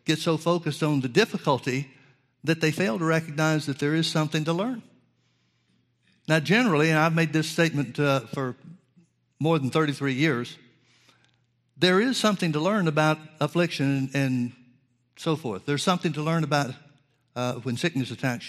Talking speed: 160 wpm